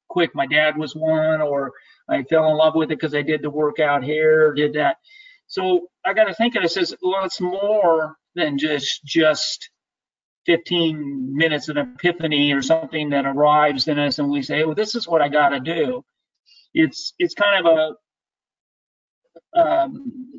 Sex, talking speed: male, 180 wpm